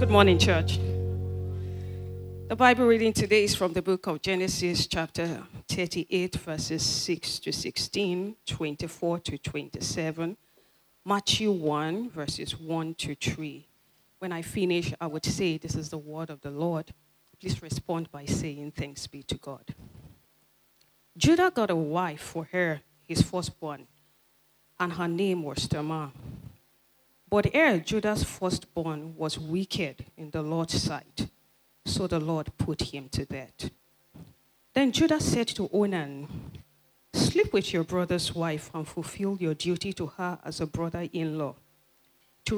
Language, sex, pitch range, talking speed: English, female, 145-180 Hz, 140 wpm